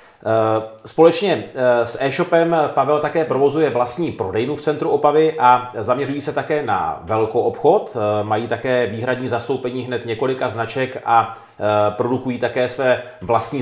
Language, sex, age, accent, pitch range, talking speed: Czech, male, 40-59, native, 115-145 Hz, 130 wpm